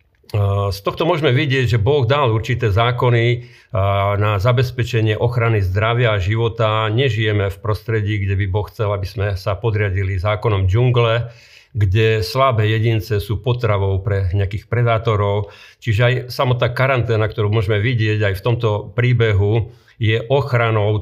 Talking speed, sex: 140 wpm, male